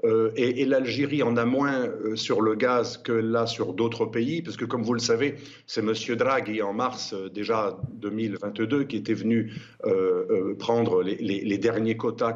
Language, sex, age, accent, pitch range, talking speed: French, male, 50-69, French, 110-145 Hz, 200 wpm